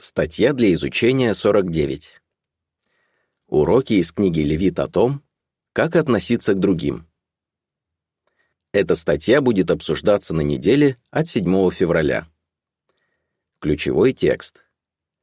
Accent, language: native, Russian